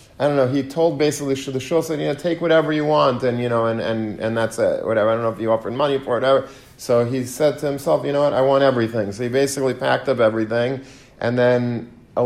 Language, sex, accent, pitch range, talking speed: English, male, American, 110-130 Hz, 260 wpm